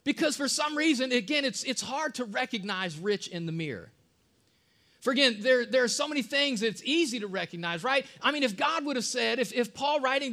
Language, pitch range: English, 220-275 Hz